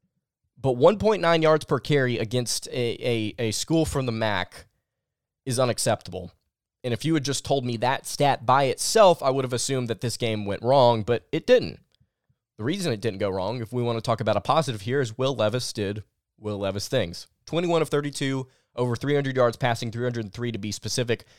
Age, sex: 20-39, male